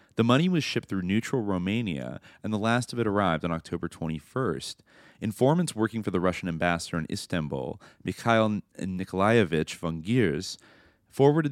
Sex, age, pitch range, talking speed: male, 30-49, 90-115 Hz, 150 wpm